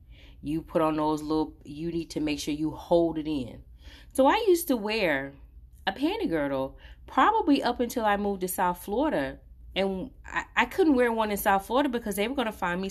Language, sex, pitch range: English, female, 155-250 Hz